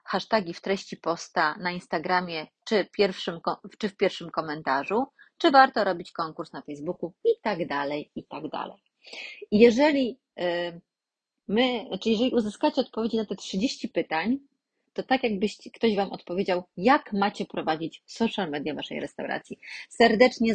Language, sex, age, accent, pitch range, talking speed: Polish, female, 30-49, native, 170-215 Hz, 145 wpm